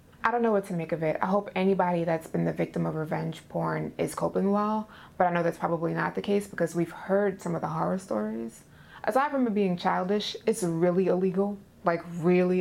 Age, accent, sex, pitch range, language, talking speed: 20-39, American, female, 170-200 Hz, English, 225 wpm